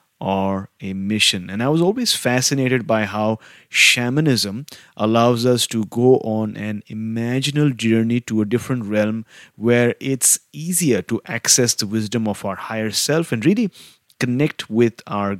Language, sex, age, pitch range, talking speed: English, male, 30-49, 110-130 Hz, 150 wpm